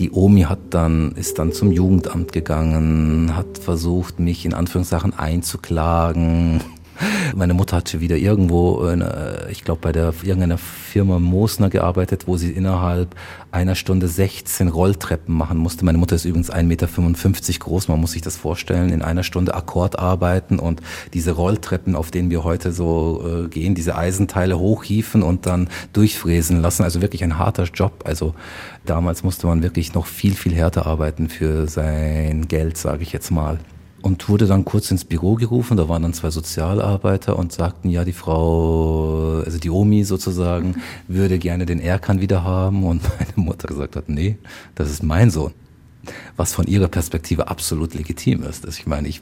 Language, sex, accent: German, male, German